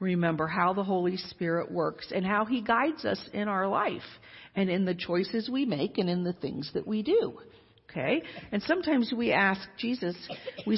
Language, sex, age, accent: English, female, 50-69, American